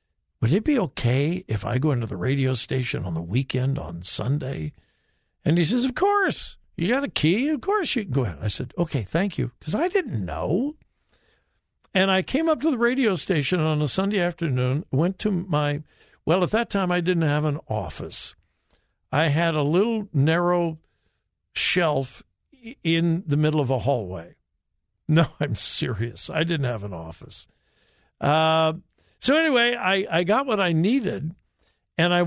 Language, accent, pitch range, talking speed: English, American, 120-200 Hz, 175 wpm